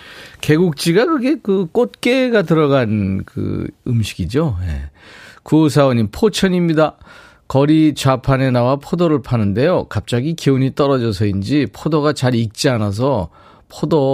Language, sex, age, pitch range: Korean, male, 40-59, 105-155 Hz